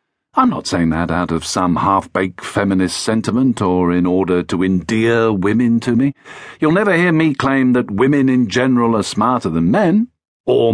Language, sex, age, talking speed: English, male, 50-69, 180 wpm